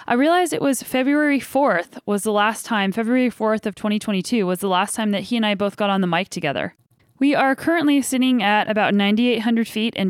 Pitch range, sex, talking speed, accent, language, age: 205-245 Hz, female, 220 wpm, American, English, 10-29